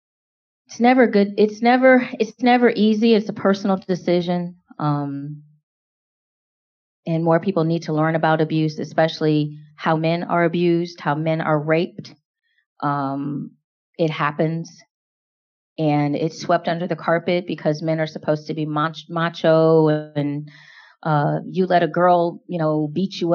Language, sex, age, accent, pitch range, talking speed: English, female, 30-49, American, 155-180 Hz, 145 wpm